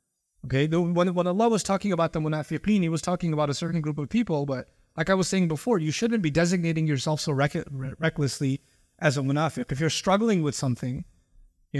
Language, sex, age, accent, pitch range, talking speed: English, male, 20-39, American, 140-175 Hz, 205 wpm